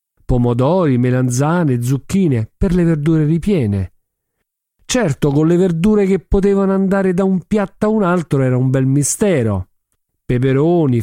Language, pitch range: Italian, 120-185 Hz